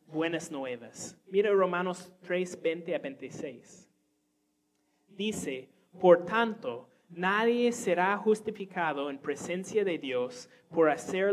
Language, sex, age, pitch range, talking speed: Spanish, male, 30-49, 150-205 Hz, 105 wpm